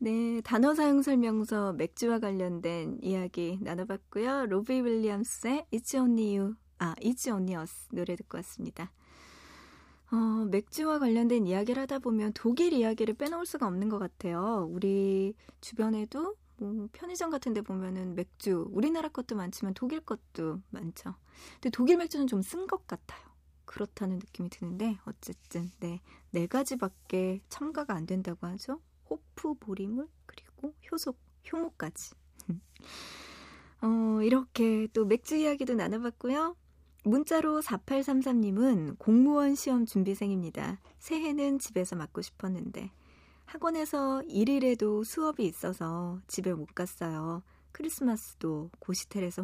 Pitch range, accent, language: 185-260 Hz, native, Korean